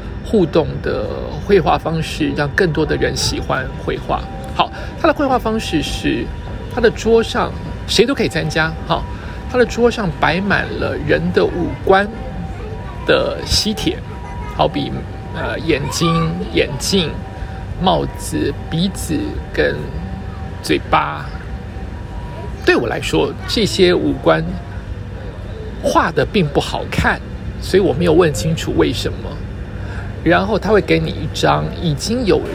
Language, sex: Chinese, male